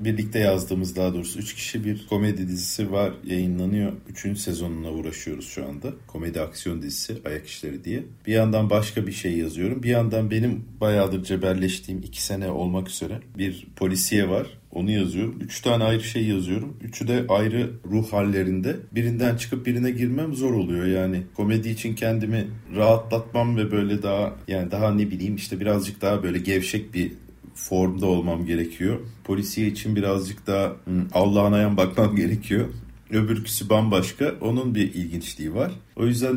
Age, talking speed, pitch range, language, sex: 40-59, 155 wpm, 95-120 Hz, Turkish, male